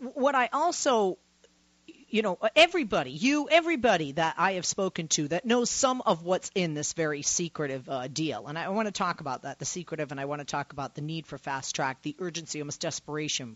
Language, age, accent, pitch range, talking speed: English, 40-59, American, 145-195 Hz, 210 wpm